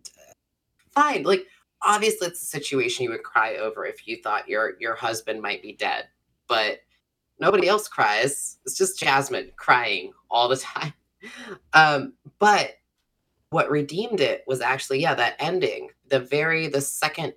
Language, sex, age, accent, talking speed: English, female, 20-39, American, 150 wpm